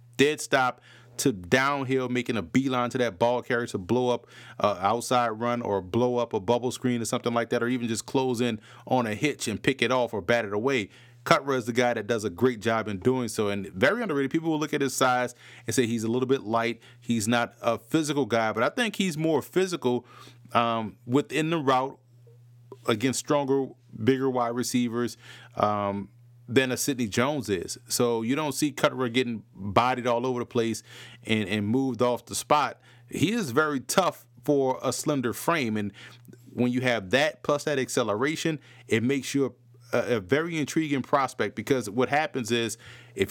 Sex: male